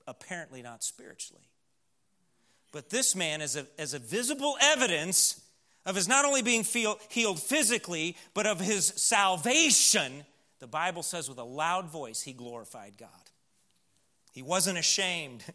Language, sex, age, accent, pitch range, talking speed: English, male, 40-59, American, 130-175 Hz, 135 wpm